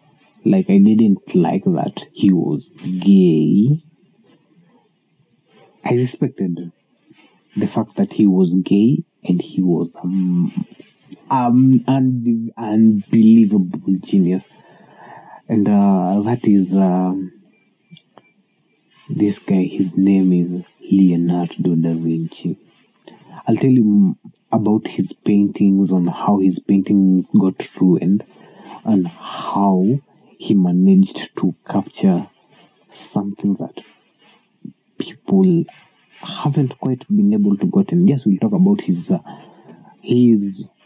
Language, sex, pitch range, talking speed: Swahili, male, 95-120 Hz, 110 wpm